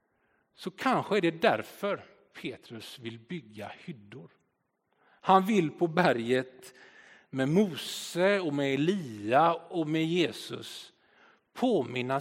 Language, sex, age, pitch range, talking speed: Swedish, male, 50-69, 120-165 Hz, 110 wpm